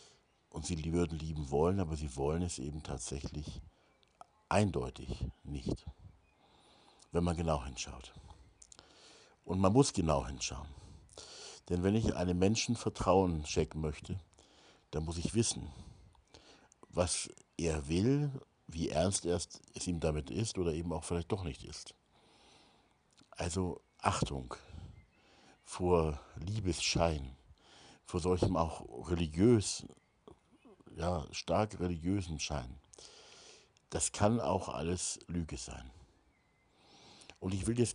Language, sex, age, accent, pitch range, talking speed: German, male, 60-79, German, 80-95 Hz, 115 wpm